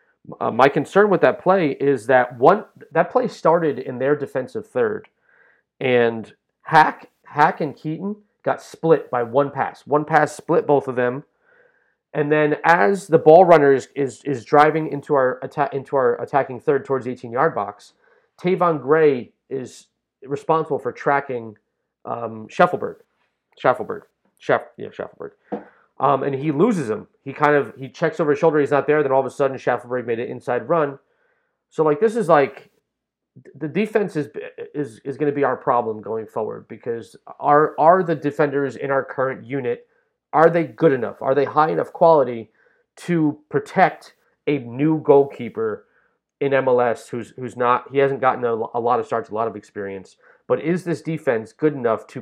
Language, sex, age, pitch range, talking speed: English, male, 30-49, 130-170 Hz, 175 wpm